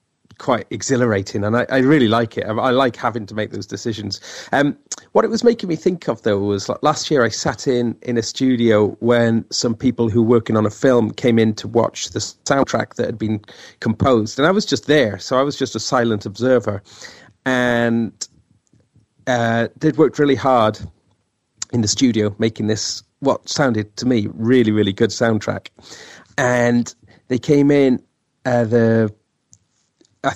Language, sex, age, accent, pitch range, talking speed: English, male, 40-59, British, 110-135 Hz, 180 wpm